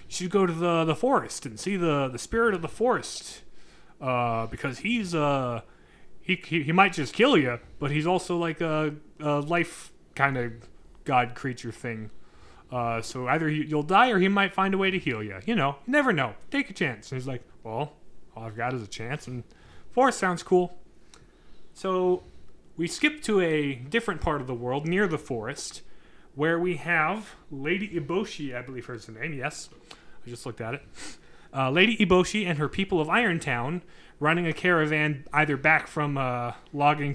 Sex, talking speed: male, 195 wpm